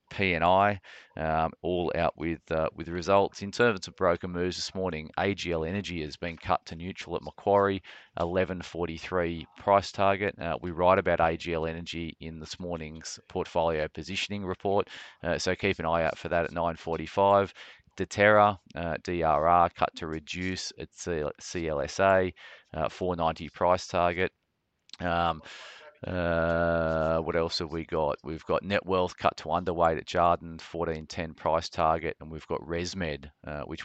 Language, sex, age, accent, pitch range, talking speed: English, male, 30-49, Australian, 80-90 Hz, 155 wpm